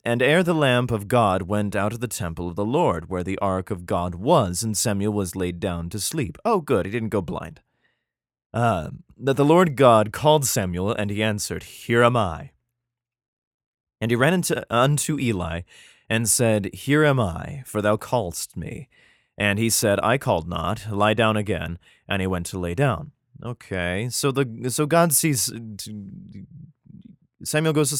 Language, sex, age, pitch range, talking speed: English, male, 30-49, 95-135 Hz, 180 wpm